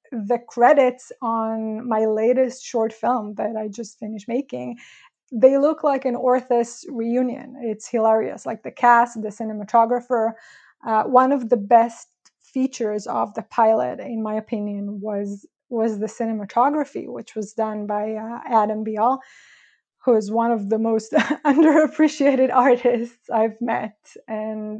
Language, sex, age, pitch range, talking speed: English, female, 20-39, 215-240 Hz, 145 wpm